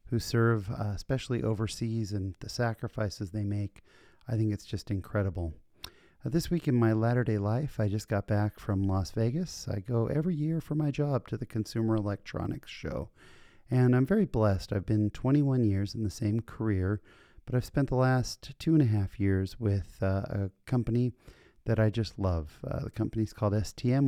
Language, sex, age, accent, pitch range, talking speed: English, male, 30-49, American, 100-125 Hz, 190 wpm